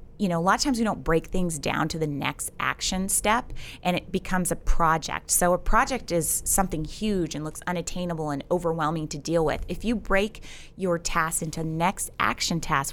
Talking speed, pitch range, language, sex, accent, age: 205 wpm, 155-190 Hz, English, female, American, 20-39